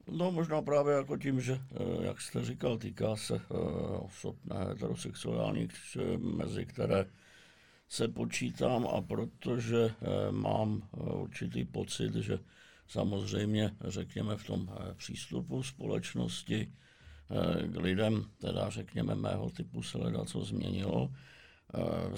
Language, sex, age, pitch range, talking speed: Czech, male, 60-79, 90-115 Hz, 105 wpm